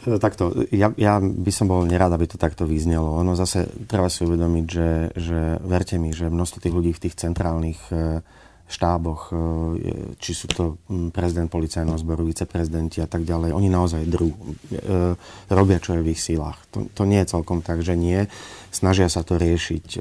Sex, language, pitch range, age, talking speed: male, Slovak, 85-95 Hz, 30-49, 175 wpm